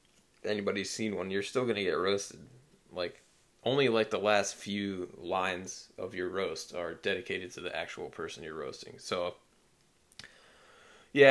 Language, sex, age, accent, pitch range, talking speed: English, male, 20-39, American, 95-110 Hz, 150 wpm